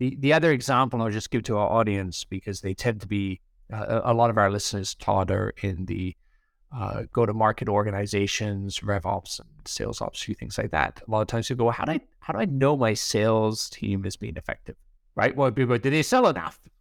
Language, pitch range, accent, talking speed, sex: English, 110-150 Hz, American, 230 wpm, male